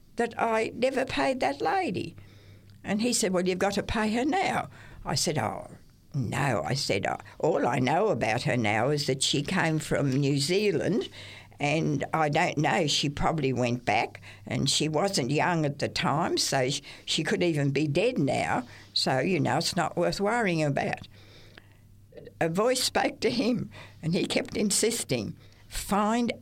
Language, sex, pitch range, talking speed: English, female, 135-195 Hz, 170 wpm